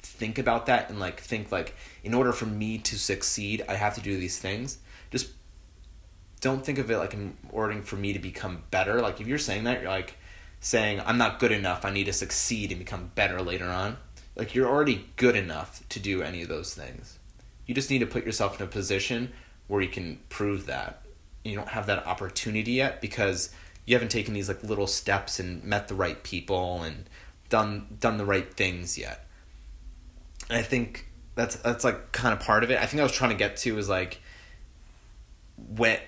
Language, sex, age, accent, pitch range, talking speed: English, male, 30-49, American, 90-110 Hz, 210 wpm